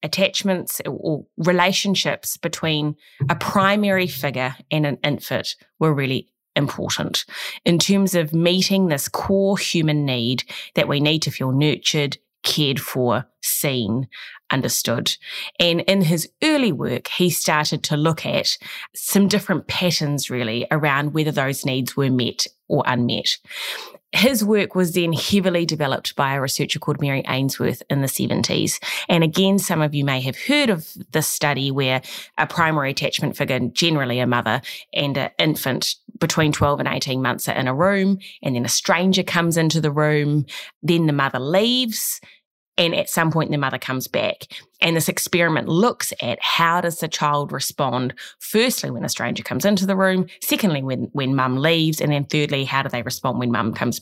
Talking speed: 170 wpm